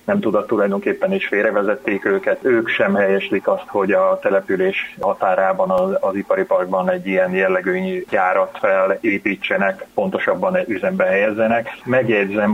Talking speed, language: 130 wpm, Hungarian